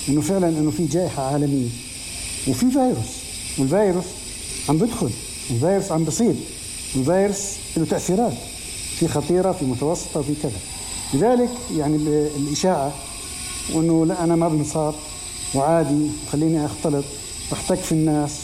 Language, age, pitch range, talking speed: Arabic, 60-79, 145-195 Hz, 120 wpm